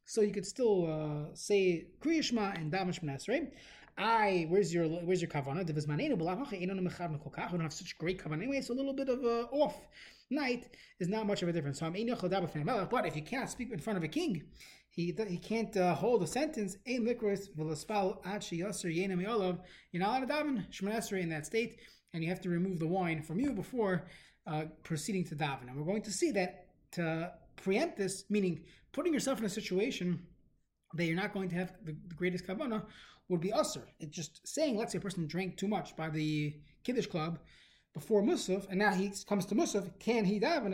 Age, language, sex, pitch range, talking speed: 30-49, English, male, 170-215 Hz, 205 wpm